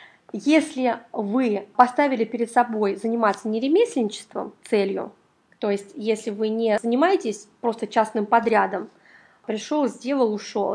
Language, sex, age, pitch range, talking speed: Russian, female, 20-39, 215-255 Hz, 110 wpm